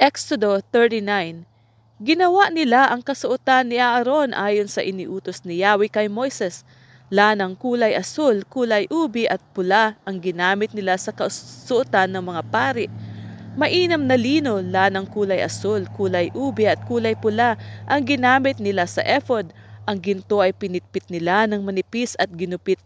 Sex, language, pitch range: female, English, 180-235 Hz